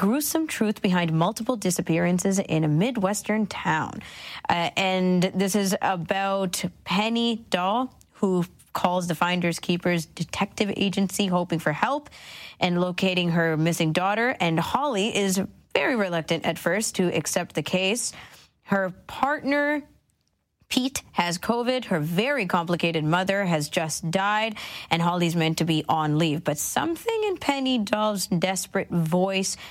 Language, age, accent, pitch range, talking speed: English, 20-39, American, 170-220 Hz, 135 wpm